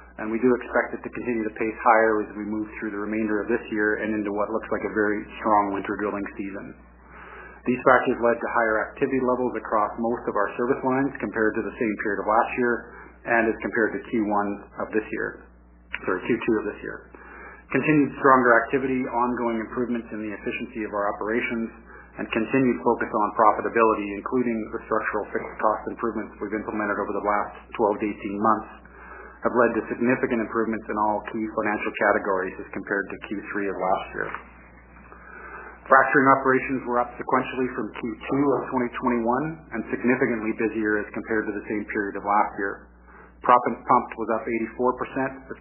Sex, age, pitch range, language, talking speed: male, 40-59, 105-125 Hz, English, 185 wpm